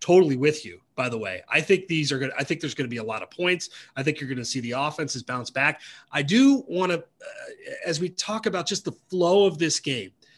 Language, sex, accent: English, male, American